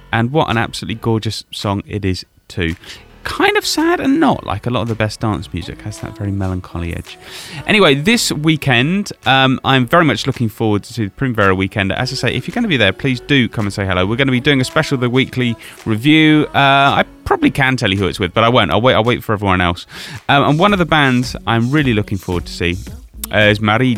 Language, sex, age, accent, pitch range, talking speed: English, male, 30-49, British, 100-140 Hz, 240 wpm